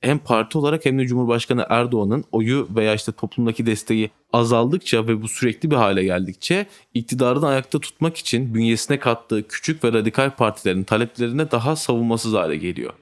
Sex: male